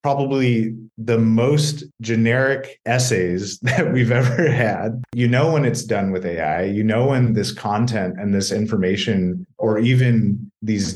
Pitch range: 105-125 Hz